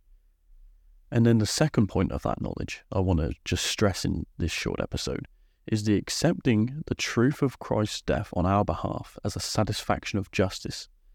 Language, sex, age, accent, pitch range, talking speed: English, male, 30-49, British, 85-115 Hz, 180 wpm